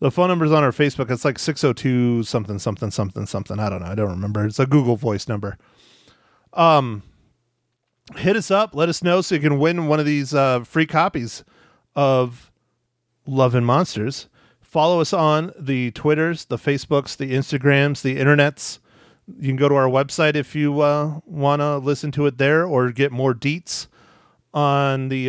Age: 30-49